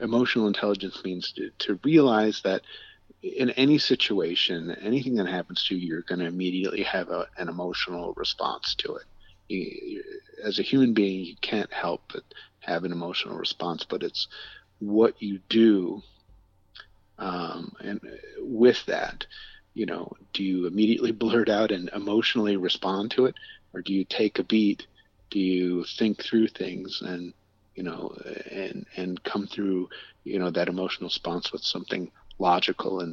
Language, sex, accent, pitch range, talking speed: English, male, American, 95-115 Hz, 160 wpm